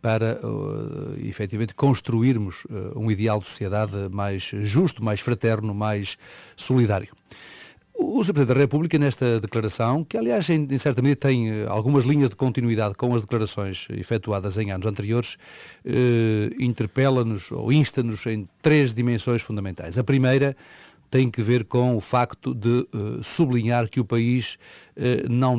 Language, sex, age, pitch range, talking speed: Portuguese, male, 40-59, 110-130 Hz, 140 wpm